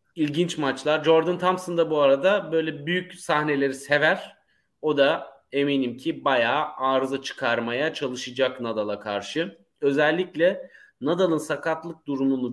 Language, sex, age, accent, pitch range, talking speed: Turkish, male, 30-49, native, 130-170 Hz, 120 wpm